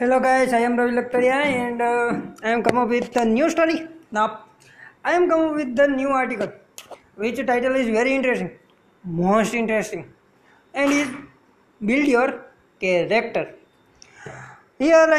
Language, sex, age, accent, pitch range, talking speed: Gujarati, female, 20-39, native, 235-290 Hz, 155 wpm